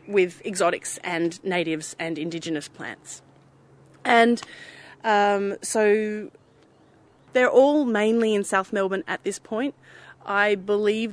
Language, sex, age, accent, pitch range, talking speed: English, female, 30-49, Australian, 185-235 Hz, 115 wpm